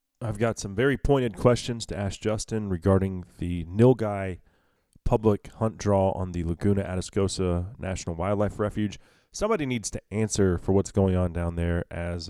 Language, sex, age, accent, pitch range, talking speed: English, male, 30-49, American, 90-115 Hz, 160 wpm